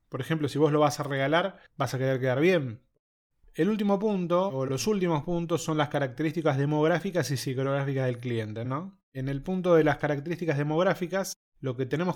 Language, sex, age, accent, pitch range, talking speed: Spanish, male, 20-39, Argentinian, 130-165 Hz, 190 wpm